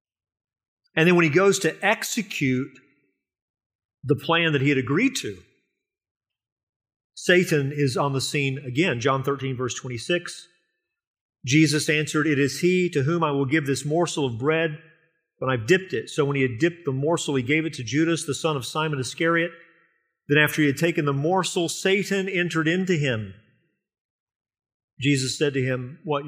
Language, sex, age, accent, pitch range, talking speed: English, male, 40-59, American, 125-160 Hz, 170 wpm